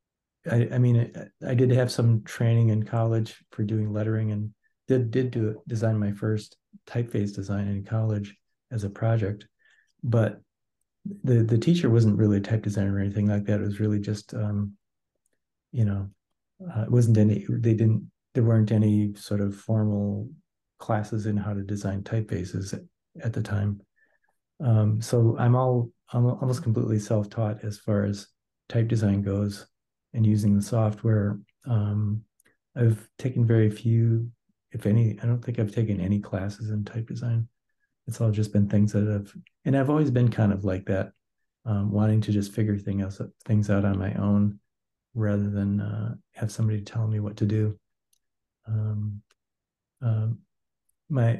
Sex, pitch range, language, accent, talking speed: male, 105-115 Hz, English, American, 170 wpm